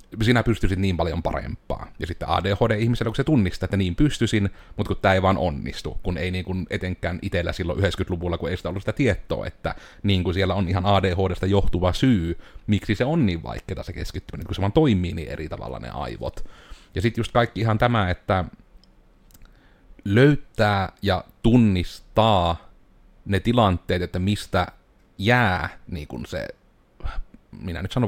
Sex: male